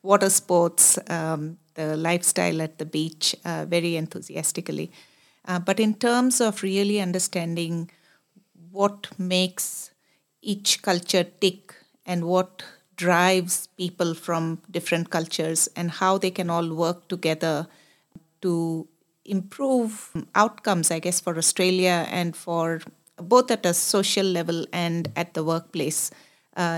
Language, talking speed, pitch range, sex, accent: English, 125 wpm, 170-195 Hz, female, Indian